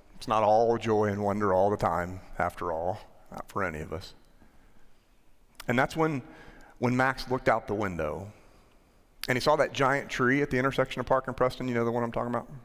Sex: male